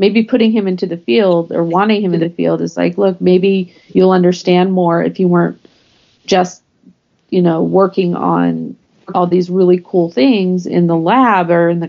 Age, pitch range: 40-59, 170-200 Hz